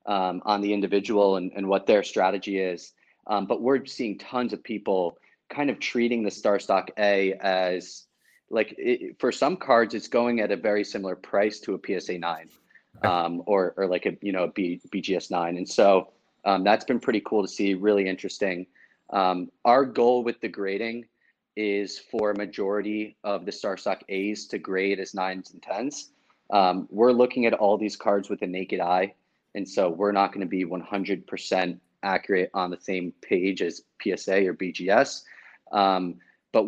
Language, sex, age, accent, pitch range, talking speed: English, male, 30-49, American, 95-110 Hz, 185 wpm